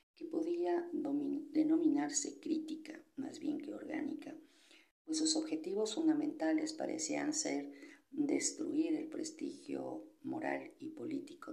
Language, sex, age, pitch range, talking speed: Spanish, female, 50-69, 305-320 Hz, 105 wpm